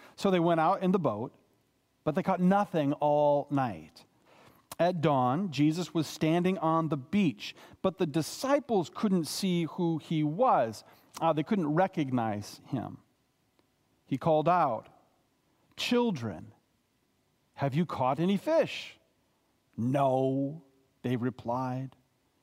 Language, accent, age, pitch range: English, American, 40-59, 130-175 Hz